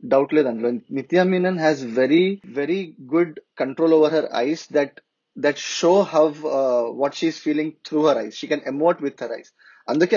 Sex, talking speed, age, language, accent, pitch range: male, 190 wpm, 20-39, Telugu, native, 145-185 Hz